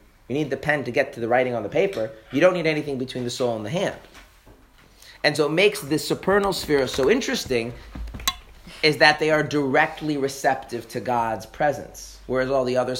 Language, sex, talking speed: English, male, 205 wpm